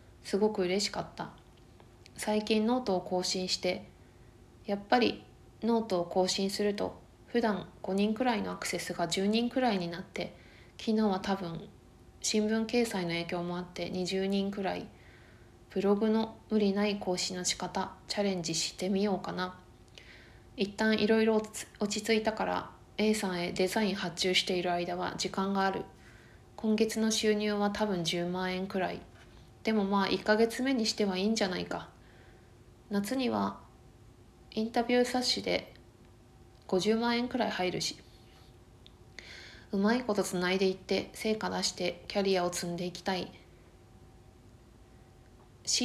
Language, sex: Japanese, female